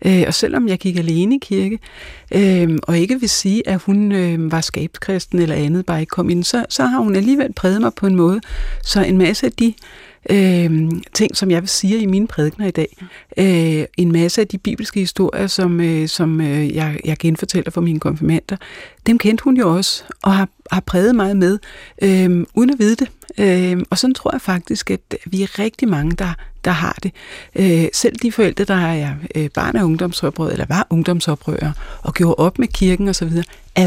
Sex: female